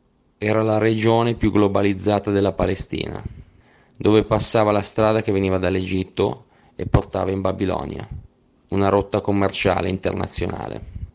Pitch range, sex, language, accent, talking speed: 95-110 Hz, male, Italian, native, 120 wpm